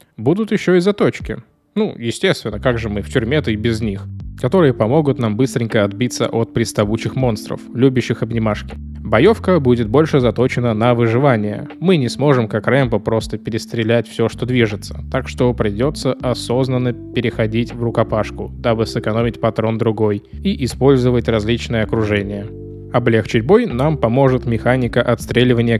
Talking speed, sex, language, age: 140 wpm, male, Russian, 20-39